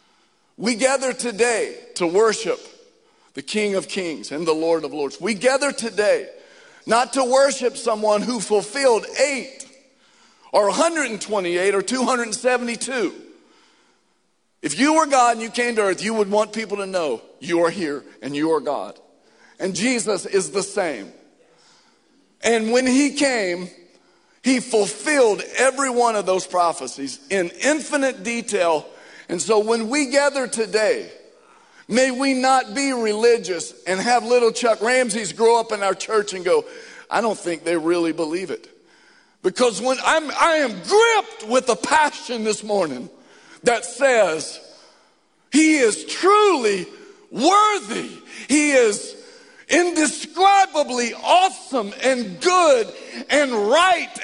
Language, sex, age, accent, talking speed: English, male, 50-69, American, 135 wpm